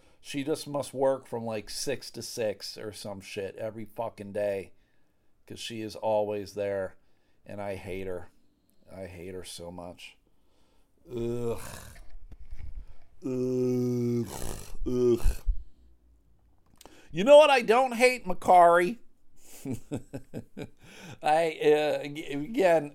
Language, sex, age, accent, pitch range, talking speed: English, male, 50-69, American, 105-145 Hz, 110 wpm